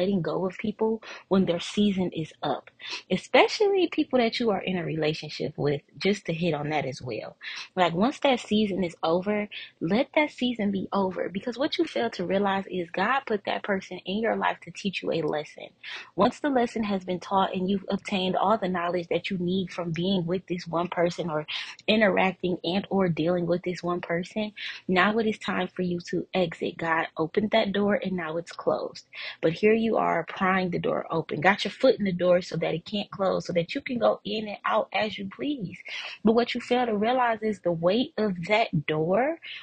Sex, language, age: female, English, 20-39